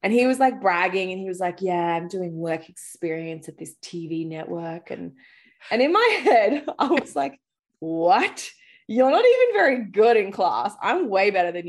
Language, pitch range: English, 170-255 Hz